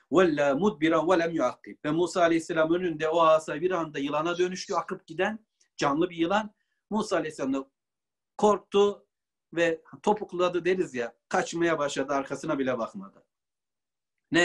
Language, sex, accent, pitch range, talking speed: Turkish, male, native, 155-200 Hz, 115 wpm